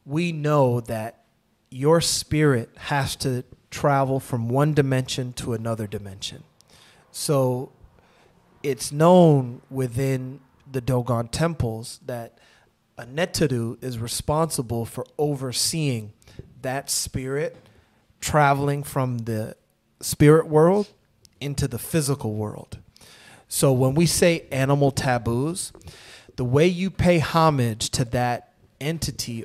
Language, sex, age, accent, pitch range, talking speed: English, male, 30-49, American, 115-145 Hz, 105 wpm